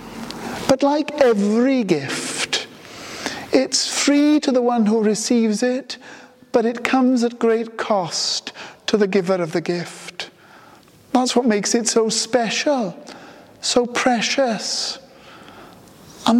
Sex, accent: male, British